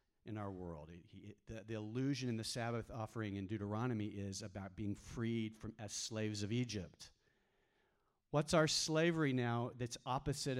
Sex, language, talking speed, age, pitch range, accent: male, English, 155 wpm, 40-59, 105-160 Hz, American